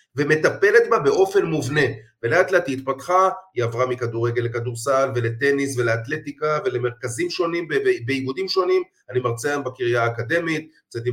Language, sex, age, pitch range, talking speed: Hebrew, male, 30-49, 130-190 Hz, 140 wpm